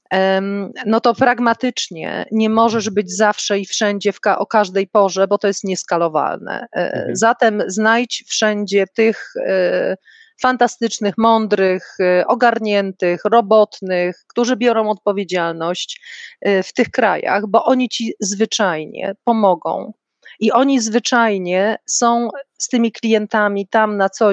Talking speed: 115 wpm